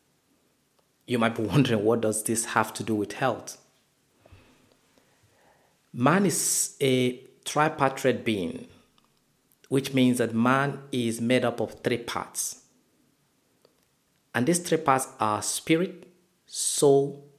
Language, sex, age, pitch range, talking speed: English, male, 50-69, 120-150 Hz, 115 wpm